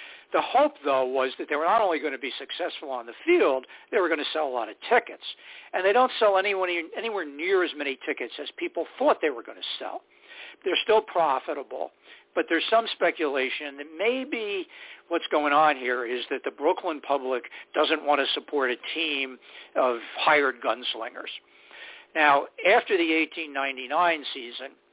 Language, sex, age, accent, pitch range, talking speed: English, male, 60-79, American, 140-220 Hz, 180 wpm